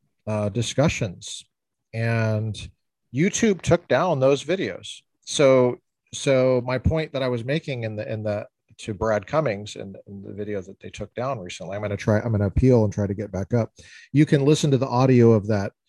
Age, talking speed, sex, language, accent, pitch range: 40-59, 200 wpm, male, English, American, 100-125 Hz